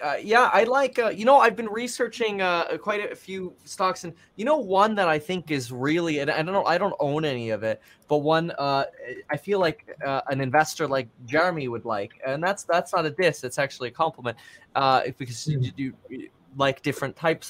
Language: English